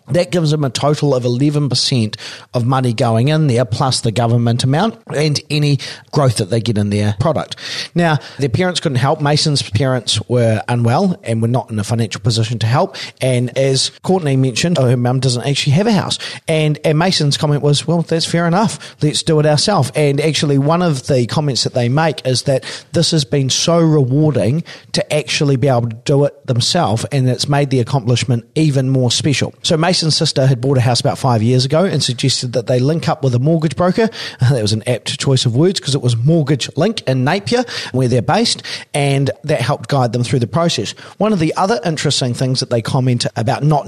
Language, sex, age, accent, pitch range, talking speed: English, male, 40-59, Australian, 125-155 Hz, 215 wpm